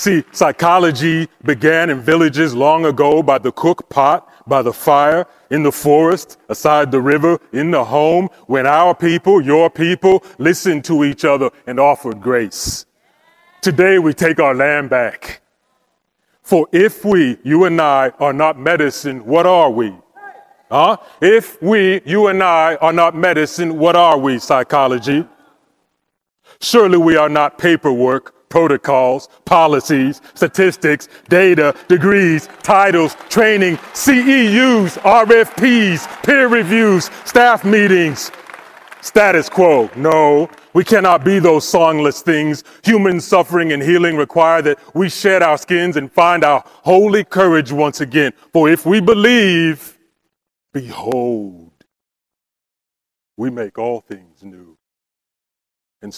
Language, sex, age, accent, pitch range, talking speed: English, male, 30-49, American, 145-185 Hz, 130 wpm